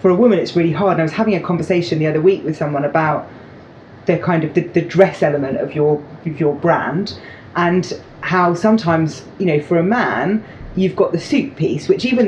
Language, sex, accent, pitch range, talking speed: English, female, British, 160-210 Hz, 210 wpm